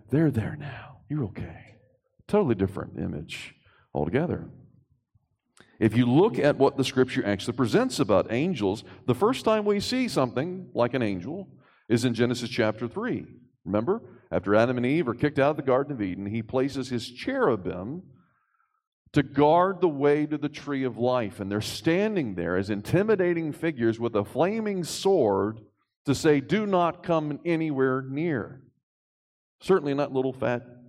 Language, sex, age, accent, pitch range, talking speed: English, male, 40-59, American, 115-165 Hz, 160 wpm